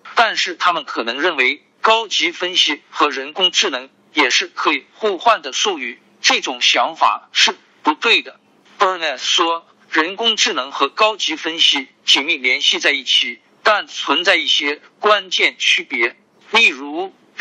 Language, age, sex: Chinese, 50-69, male